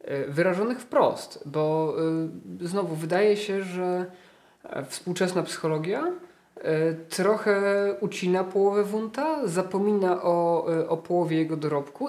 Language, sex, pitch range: Polish, male, 140-180 Hz